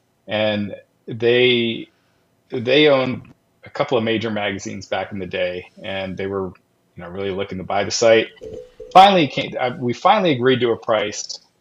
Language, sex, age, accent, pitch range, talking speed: English, male, 30-49, American, 105-125 Hz, 170 wpm